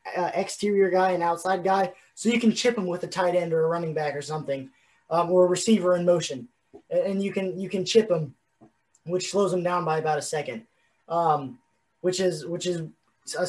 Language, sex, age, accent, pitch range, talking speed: English, male, 20-39, American, 170-195 Hz, 220 wpm